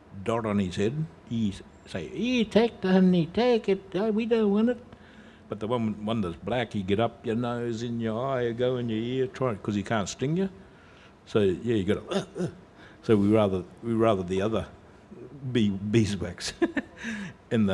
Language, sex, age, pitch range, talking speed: English, male, 60-79, 95-120 Hz, 195 wpm